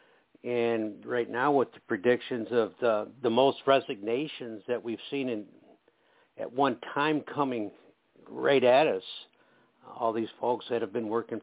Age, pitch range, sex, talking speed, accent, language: 60-79, 120-160 Hz, male, 150 wpm, American, English